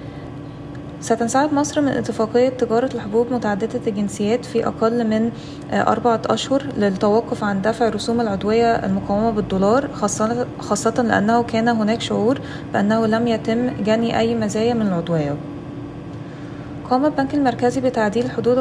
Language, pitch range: Arabic, 205-235 Hz